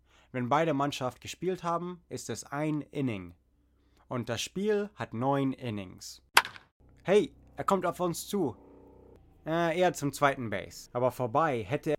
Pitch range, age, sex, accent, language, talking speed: 120-150 Hz, 20-39, male, German, English, 145 wpm